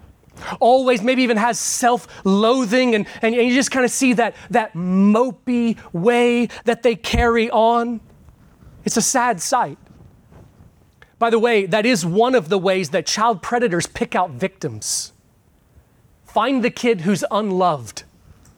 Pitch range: 170-240 Hz